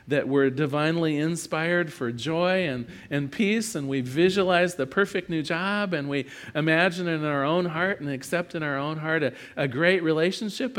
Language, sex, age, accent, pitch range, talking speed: English, male, 40-59, American, 160-210 Hz, 185 wpm